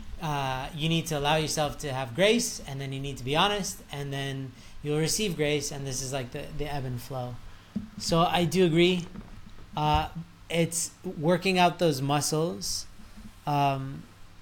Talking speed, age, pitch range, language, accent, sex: 170 wpm, 30-49, 135-180 Hz, English, American, male